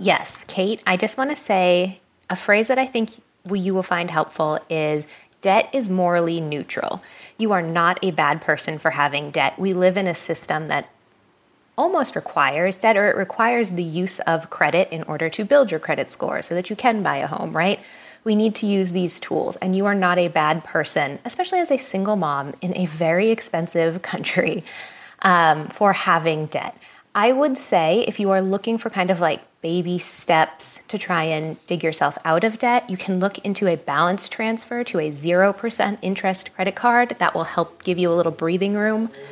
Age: 20-39